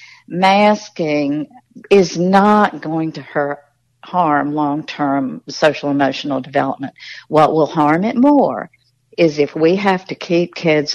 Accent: American